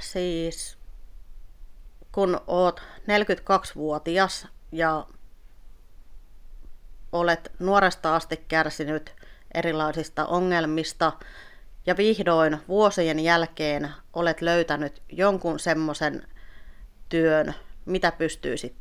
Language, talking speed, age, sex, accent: Finnish, 70 wpm, 30-49, female, native